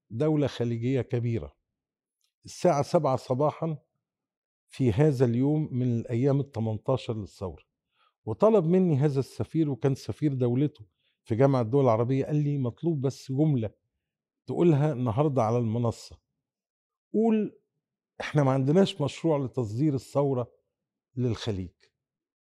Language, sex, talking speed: Arabic, male, 110 wpm